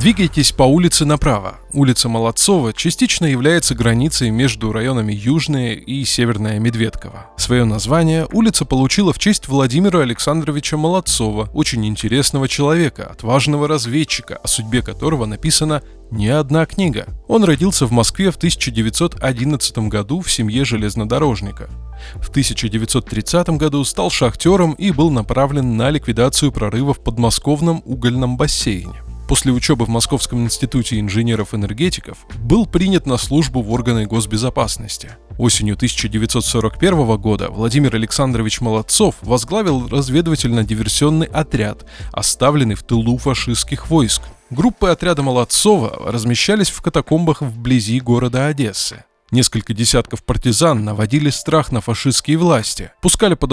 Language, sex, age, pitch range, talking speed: Russian, male, 20-39, 115-150 Hz, 120 wpm